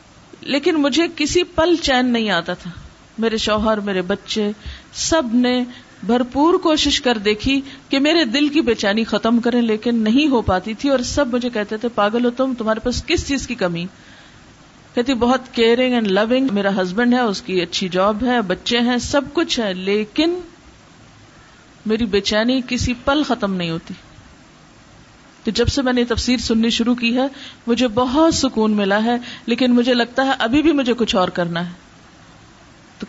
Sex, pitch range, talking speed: female, 215-260 Hz, 175 wpm